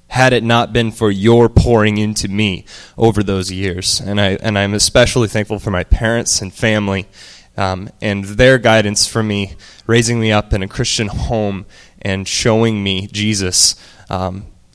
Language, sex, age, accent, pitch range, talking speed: English, male, 20-39, American, 100-120 Hz, 165 wpm